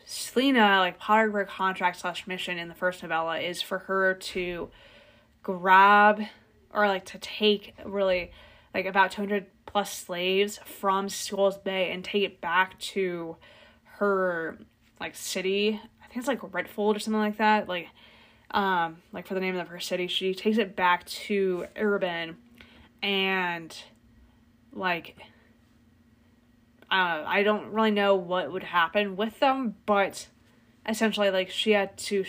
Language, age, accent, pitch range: English, 20-39, American, 180-210 Hz